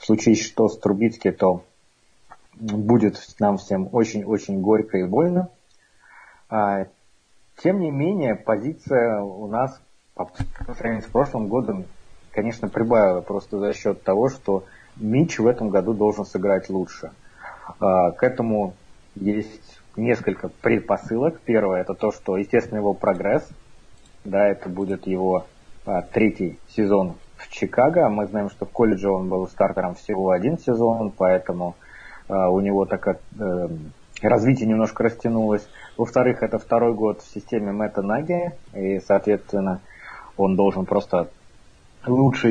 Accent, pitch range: native, 95-115 Hz